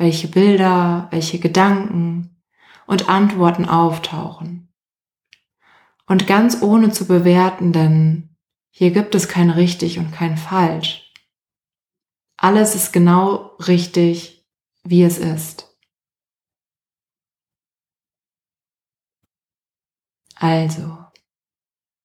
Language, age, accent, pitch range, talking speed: German, 20-39, German, 165-180 Hz, 80 wpm